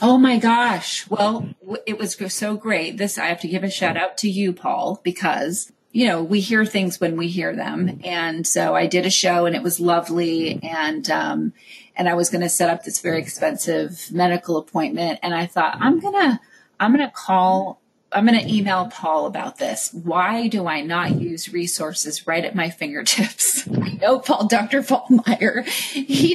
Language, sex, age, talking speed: English, female, 30-49, 200 wpm